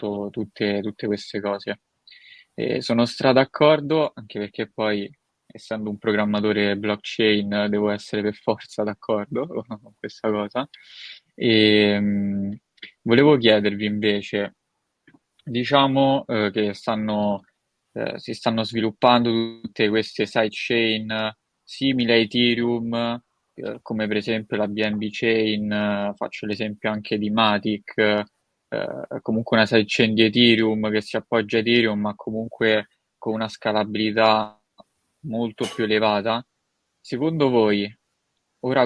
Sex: male